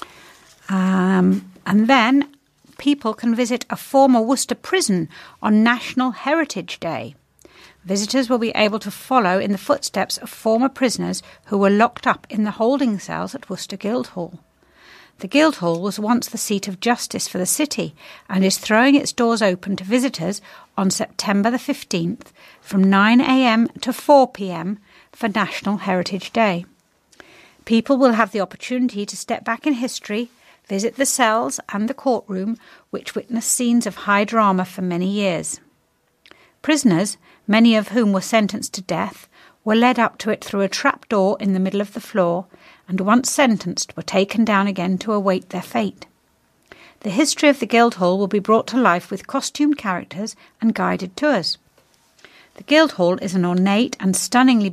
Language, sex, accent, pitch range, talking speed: English, female, British, 190-245 Hz, 165 wpm